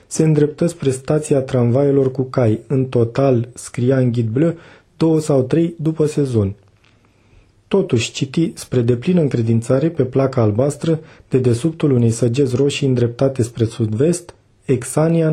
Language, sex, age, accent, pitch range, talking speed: Romanian, male, 30-49, native, 120-150 Hz, 135 wpm